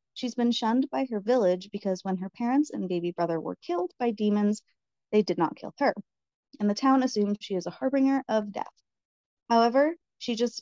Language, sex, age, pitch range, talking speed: English, female, 20-39, 195-265 Hz, 200 wpm